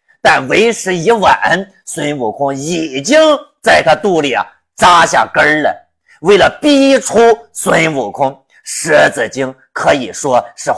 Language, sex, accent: Chinese, male, native